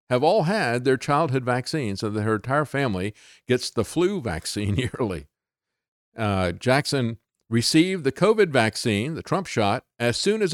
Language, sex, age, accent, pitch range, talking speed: English, male, 50-69, American, 95-145 Hz, 160 wpm